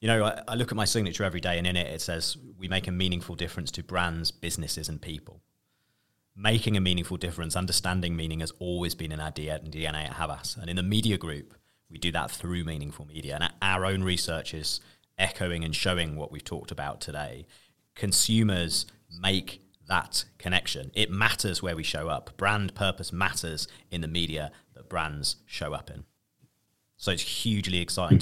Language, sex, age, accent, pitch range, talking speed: English, male, 30-49, British, 85-105 Hz, 185 wpm